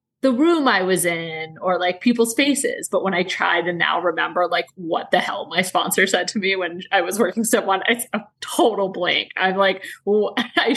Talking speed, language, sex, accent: 215 wpm, English, female, American